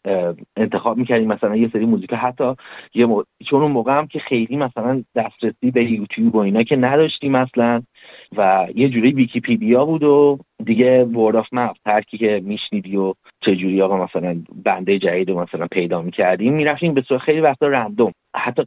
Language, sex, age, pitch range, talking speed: Persian, male, 30-49, 95-125 Hz, 175 wpm